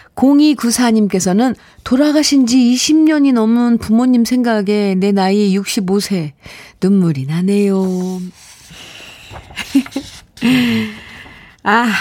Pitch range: 160-235 Hz